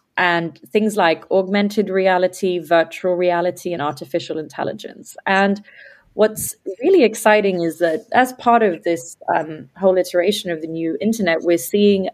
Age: 30-49